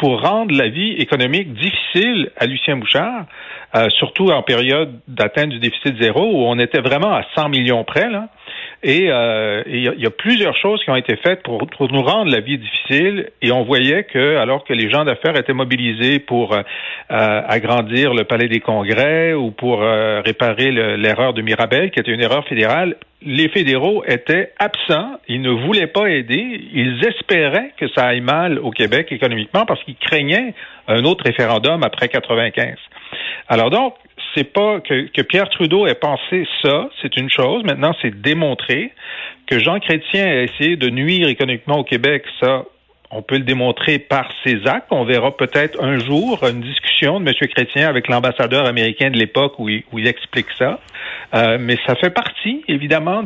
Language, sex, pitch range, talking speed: French, male, 120-160 Hz, 185 wpm